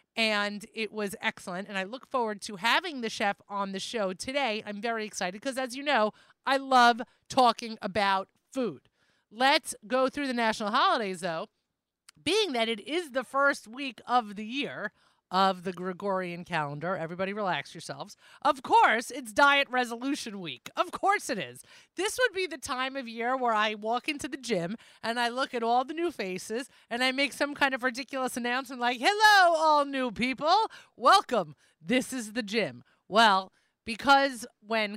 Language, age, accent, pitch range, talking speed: English, 30-49, American, 200-270 Hz, 180 wpm